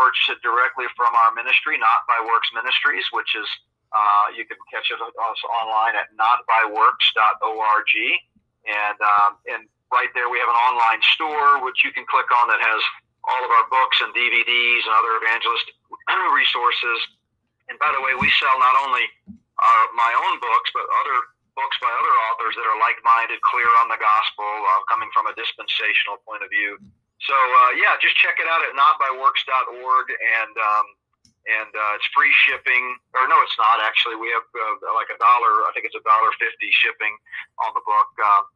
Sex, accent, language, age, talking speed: male, American, English, 40-59, 185 wpm